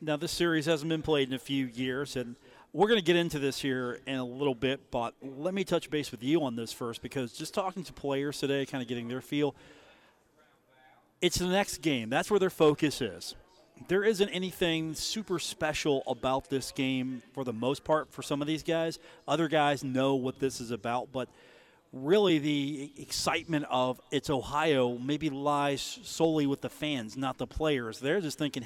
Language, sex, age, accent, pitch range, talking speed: English, male, 40-59, American, 130-155 Hz, 200 wpm